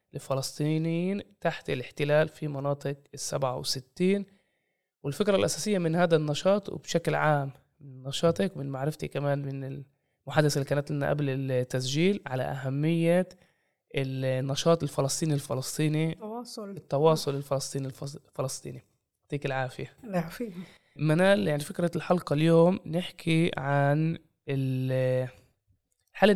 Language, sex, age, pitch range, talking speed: Arabic, male, 20-39, 135-165 Hz, 105 wpm